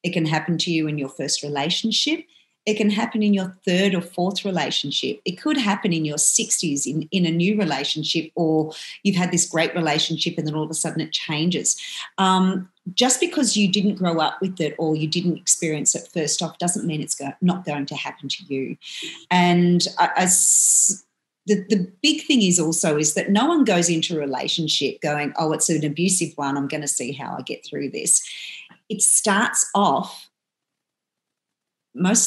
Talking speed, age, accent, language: 190 wpm, 40-59, Australian, English